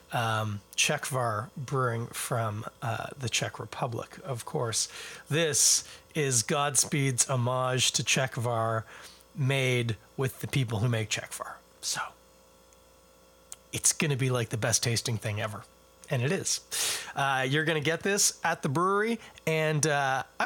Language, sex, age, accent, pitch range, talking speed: English, male, 30-49, American, 110-160 Hz, 140 wpm